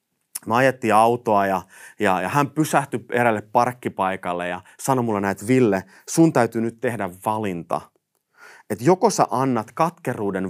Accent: native